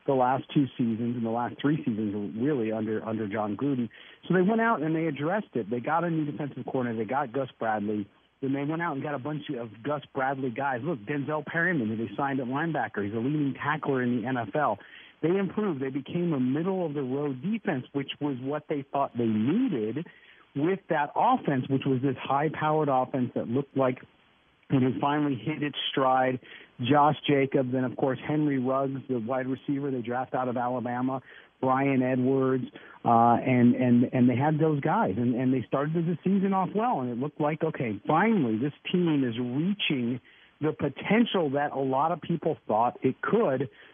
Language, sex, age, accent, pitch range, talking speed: English, male, 50-69, American, 130-160 Hz, 195 wpm